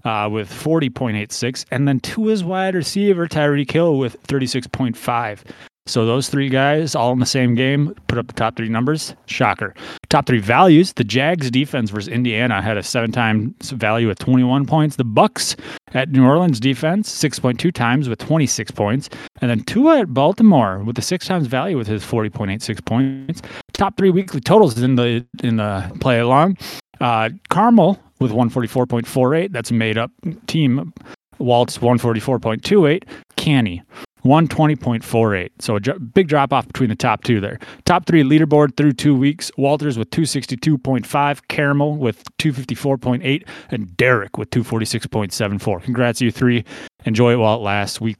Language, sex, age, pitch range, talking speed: English, male, 30-49, 115-150 Hz, 155 wpm